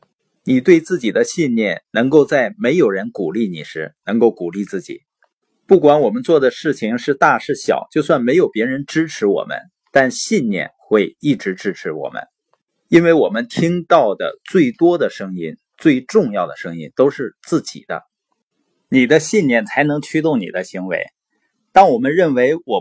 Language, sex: Chinese, male